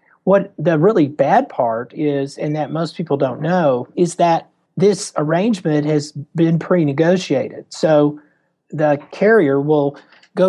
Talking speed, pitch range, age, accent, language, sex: 135 wpm, 145-175 Hz, 40-59, American, English, male